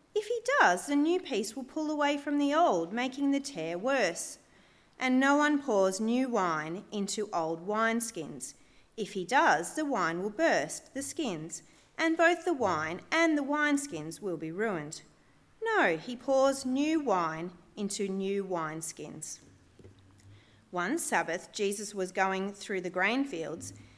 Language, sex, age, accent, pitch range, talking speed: English, female, 40-59, Australian, 180-285 Hz, 155 wpm